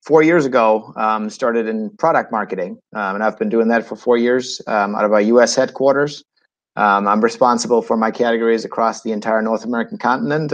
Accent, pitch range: American, 110-135 Hz